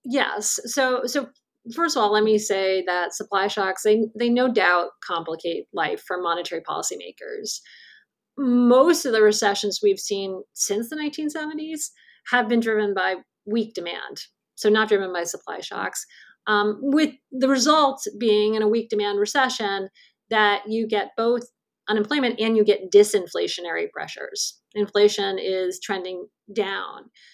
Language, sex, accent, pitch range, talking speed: English, female, American, 205-270 Hz, 145 wpm